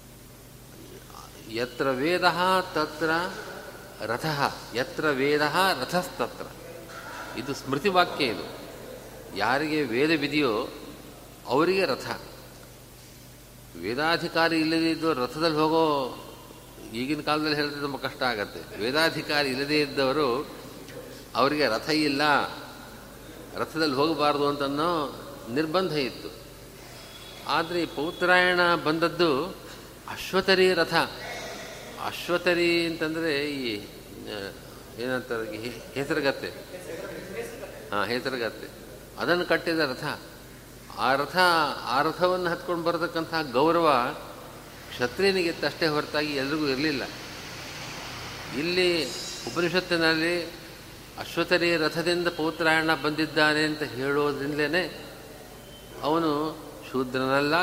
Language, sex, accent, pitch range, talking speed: Kannada, male, native, 140-170 Hz, 75 wpm